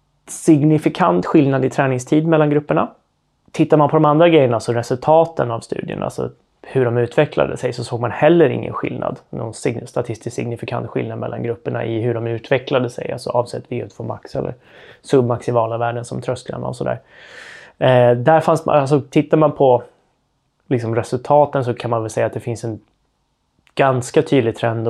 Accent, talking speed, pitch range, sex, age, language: native, 170 wpm, 115-135 Hz, male, 20-39, Swedish